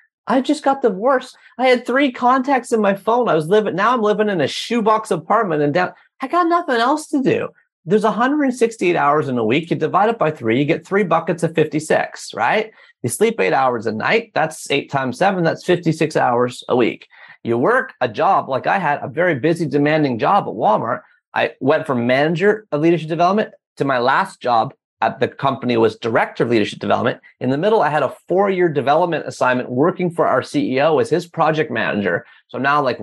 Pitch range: 155-230 Hz